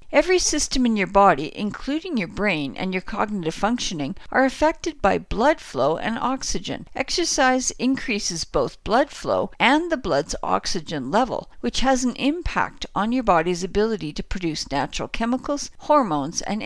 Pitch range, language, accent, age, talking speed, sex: 195-265 Hz, English, American, 60-79, 155 wpm, female